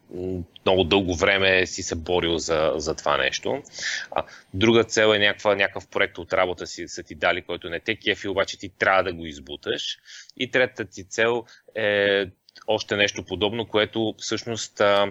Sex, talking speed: male, 165 wpm